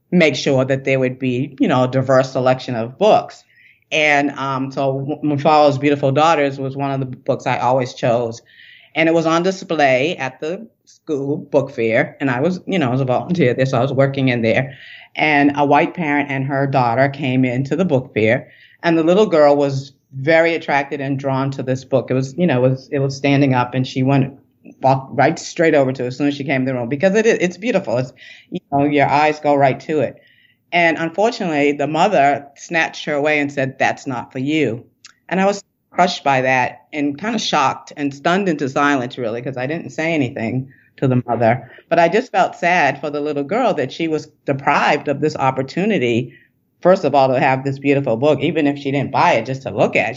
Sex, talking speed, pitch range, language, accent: female, 225 wpm, 130-155 Hz, English, American